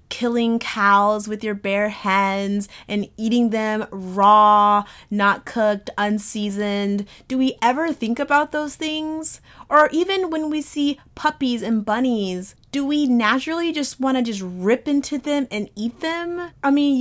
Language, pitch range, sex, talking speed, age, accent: English, 200-265 Hz, female, 150 wpm, 30-49, American